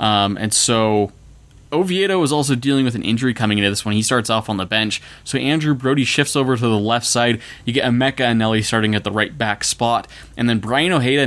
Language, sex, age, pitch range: English, male, 20-39, 110-135 Hz